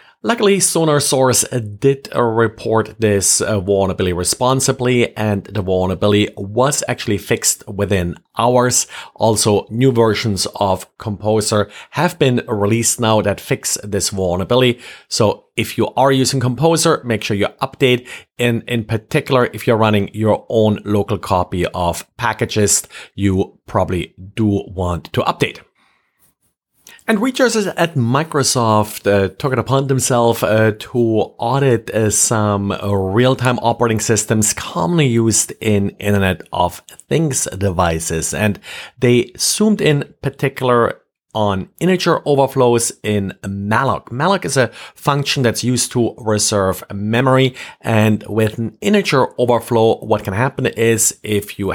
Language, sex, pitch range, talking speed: English, male, 100-125 Hz, 130 wpm